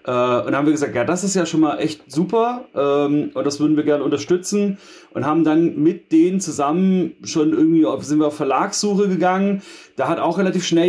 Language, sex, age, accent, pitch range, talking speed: German, male, 30-49, German, 140-170 Hz, 215 wpm